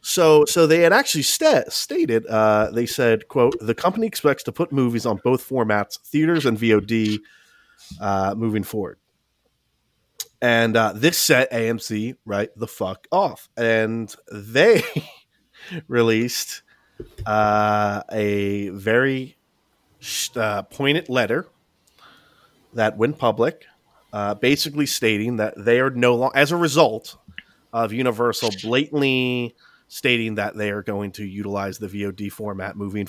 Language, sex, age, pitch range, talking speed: English, male, 30-49, 105-135 Hz, 130 wpm